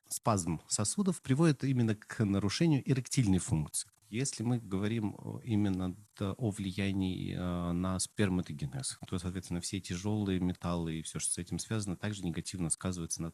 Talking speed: 140 wpm